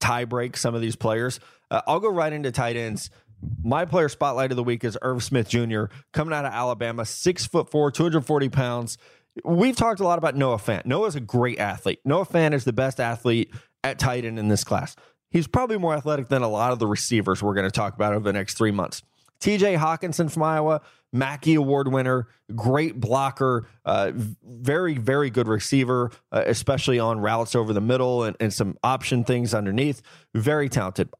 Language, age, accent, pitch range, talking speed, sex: English, 20-39, American, 115-140 Hz, 205 wpm, male